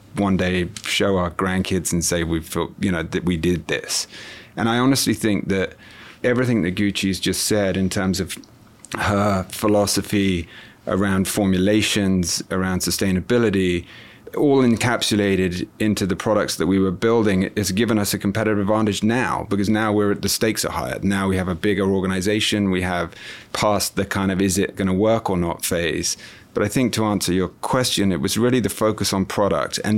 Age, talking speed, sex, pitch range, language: 30-49, 185 wpm, male, 95-105 Hz, English